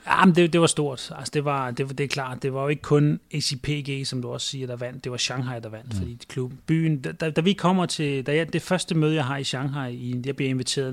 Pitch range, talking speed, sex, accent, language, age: 120-145 Hz, 245 wpm, male, native, Danish, 30-49